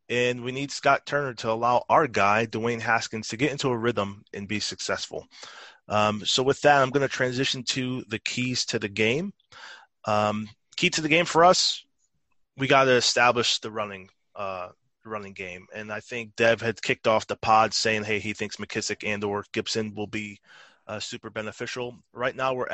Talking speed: 195 wpm